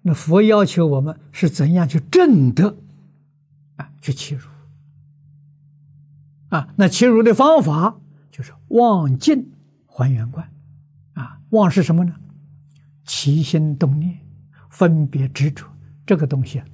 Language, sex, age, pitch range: Chinese, male, 60-79, 140-160 Hz